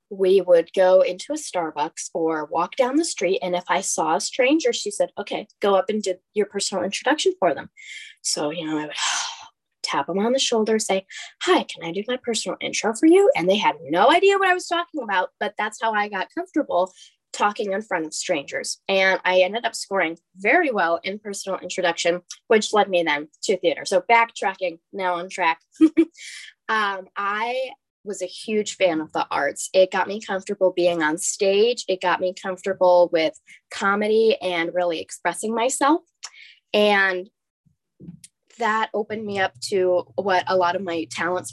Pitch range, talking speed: 180-235 Hz, 185 wpm